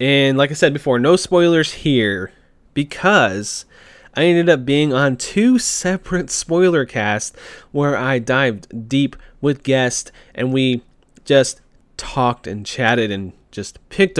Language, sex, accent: English, male, American